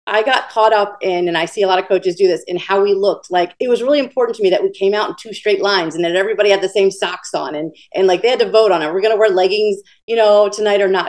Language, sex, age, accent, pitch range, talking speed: English, female, 30-49, American, 190-250 Hz, 325 wpm